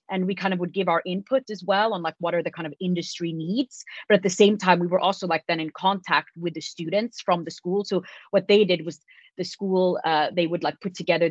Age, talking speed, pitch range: 30-49, 265 wpm, 165-195 Hz